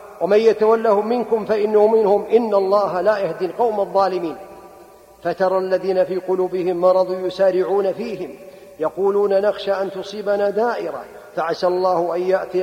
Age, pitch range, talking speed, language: 50-69, 185-215 Hz, 130 wpm, Arabic